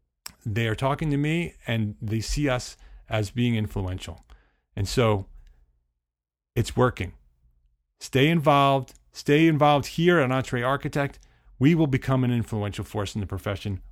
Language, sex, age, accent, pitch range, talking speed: English, male, 40-59, American, 95-150 Hz, 140 wpm